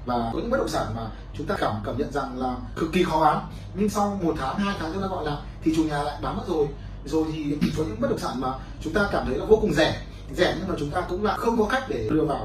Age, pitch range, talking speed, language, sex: 20-39, 115-165 Hz, 310 wpm, Vietnamese, male